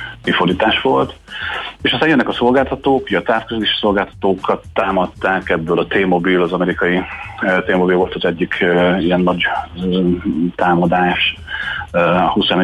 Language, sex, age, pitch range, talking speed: Hungarian, male, 40-59, 85-100 Hz, 115 wpm